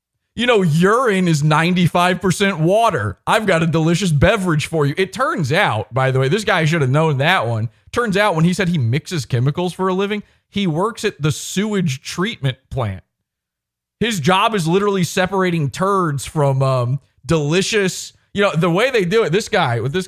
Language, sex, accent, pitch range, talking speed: English, male, American, 130-185 Hz, 190 wpm